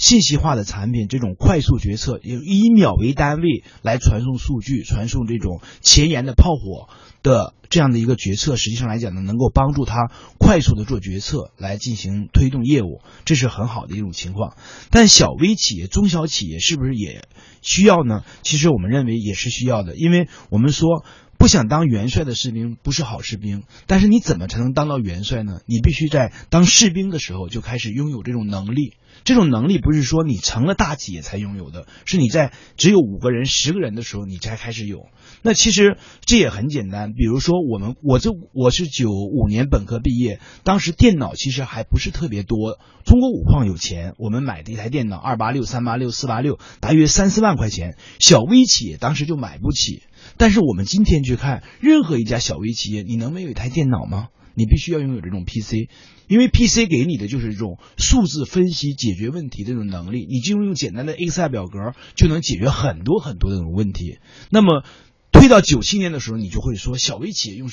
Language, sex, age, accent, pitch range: Chinese, male, 30-49, native, 110-155 Hz